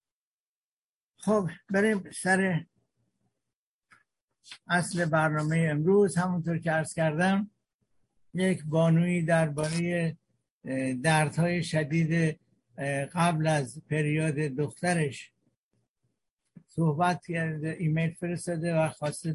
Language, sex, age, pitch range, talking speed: Persian, male, 60-79, 150-175 Hz, 80 wpm